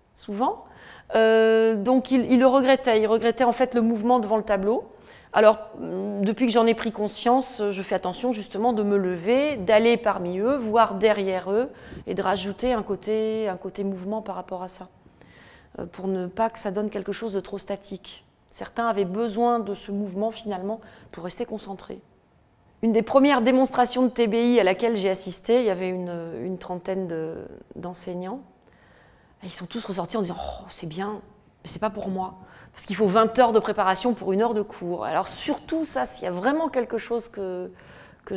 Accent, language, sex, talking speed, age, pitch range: French, French, female, 195 wpm, 30-49, 195-245 Hz